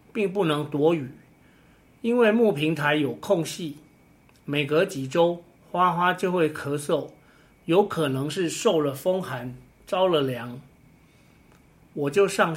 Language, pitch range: Chinese, 145-190 Hz